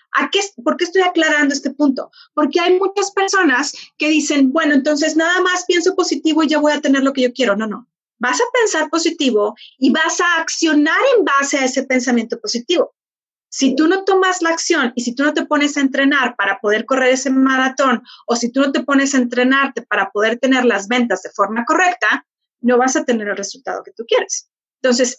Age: 30-49